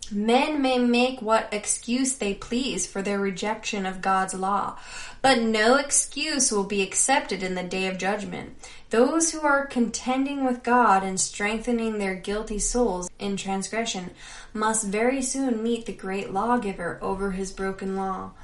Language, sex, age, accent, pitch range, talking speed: English, female, 10-29, American, 195-240 Hz, 155 wpm